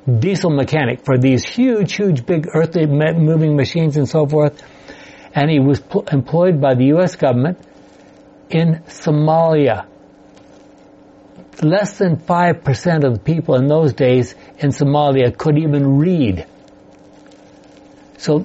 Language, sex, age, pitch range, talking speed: English, male, 60-79, 135-165 Hz, 125 wpm